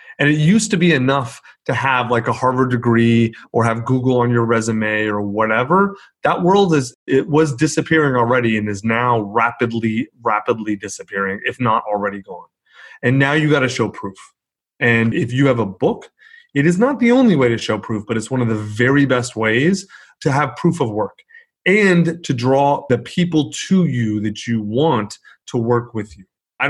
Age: 30-49